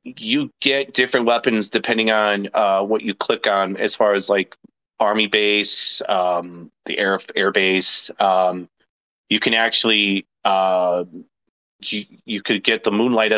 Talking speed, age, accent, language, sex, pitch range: 150 wpm, 30-49, American, English, male, 100-135 Hz